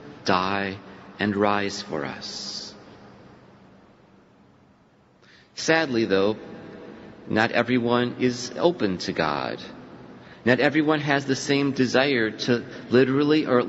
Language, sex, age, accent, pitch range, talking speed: English, male, 40-59, American, 100-130 Hz, 100 wpm